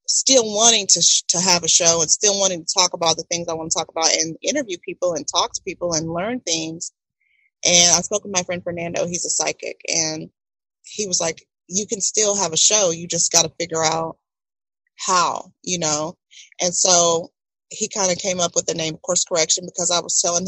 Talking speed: 225 wpm